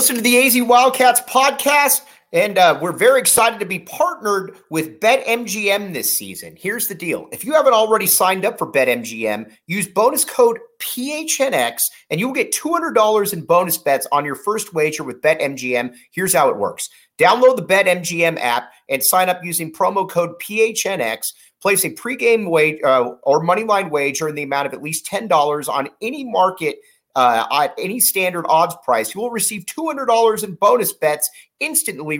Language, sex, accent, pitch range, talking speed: English, male, American, 150-230 Hz, 175 wpm